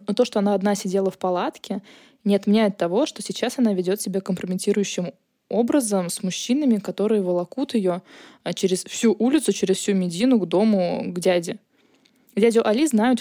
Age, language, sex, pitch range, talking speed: 20-39, Russian, female, 195-240 Hz, 165 wpm